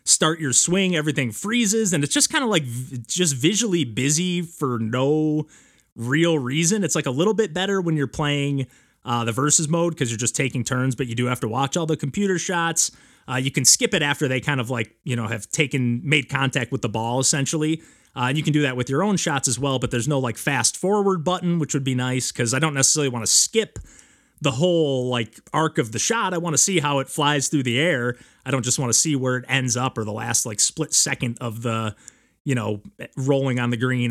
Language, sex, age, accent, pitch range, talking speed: English, male, 30-49, American, 125-165 Hz, 245 wpm